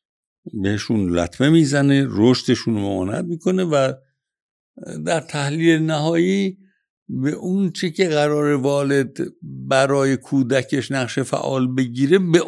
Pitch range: 95-140 Hz